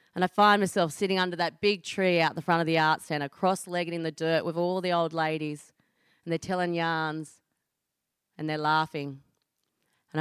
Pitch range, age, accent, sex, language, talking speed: 150-185 Hz, 30-49, Australian, female, English, 195 wpm